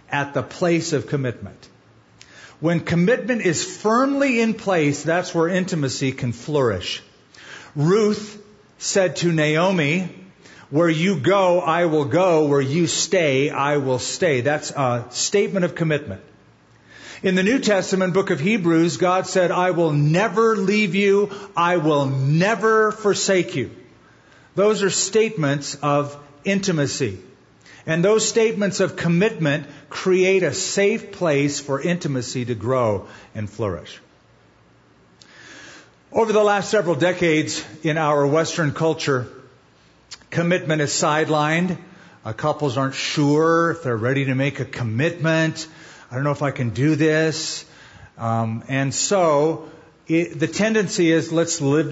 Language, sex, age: English, male, 50-69